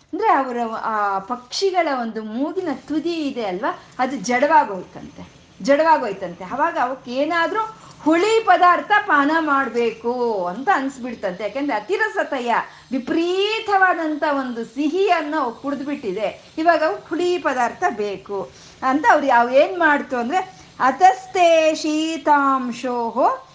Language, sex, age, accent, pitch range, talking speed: Kannada, female, 50-69, native, 220-315 Hz, 100 wpm